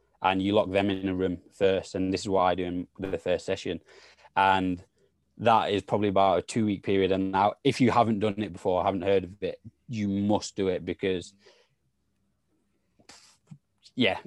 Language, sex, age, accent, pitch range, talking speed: English, male, 20-39, British, 95-105 Hz, 185 wpm